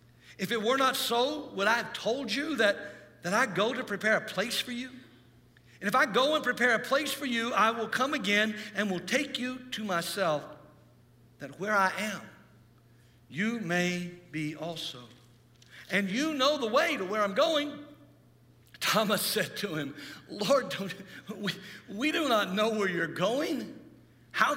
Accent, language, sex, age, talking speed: American, English, male, 60-79, 175 wpm